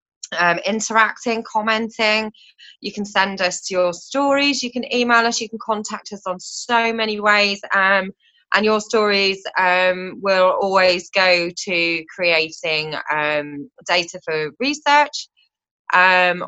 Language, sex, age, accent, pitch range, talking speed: English, female, 20-39, British, 165-215 Hz, 130 wpm